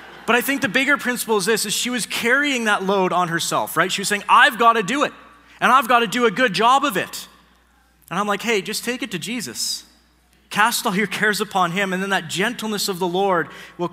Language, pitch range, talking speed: English, 170-220 Hz, 250 wpm